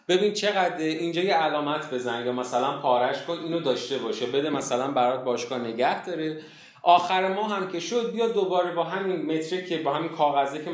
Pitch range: 125-185 Hz